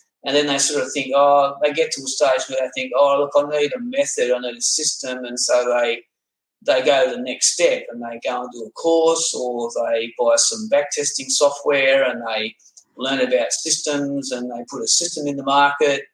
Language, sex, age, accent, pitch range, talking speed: English, male, 30-49, Australian, 130-170 Hz, 225 wpm